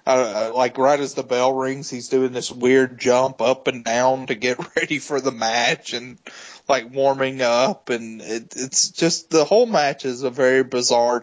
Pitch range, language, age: 120-135 Hz, English, 30-49